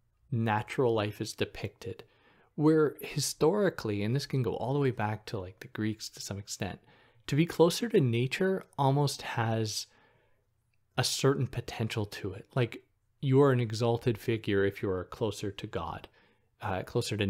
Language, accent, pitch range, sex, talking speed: English, American, 105-130 Hz, male, 165 wpm